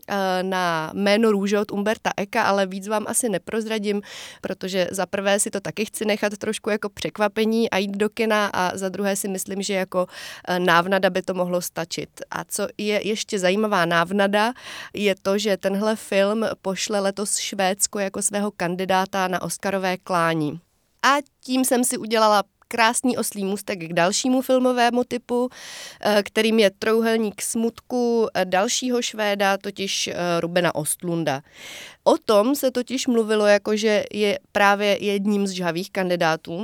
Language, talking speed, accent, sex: Czech, 150 wpm, native, female